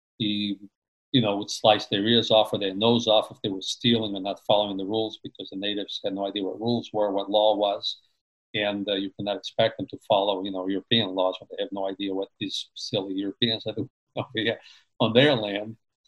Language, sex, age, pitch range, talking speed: English, male, 50-69, 100-115 Hz, 215 wpm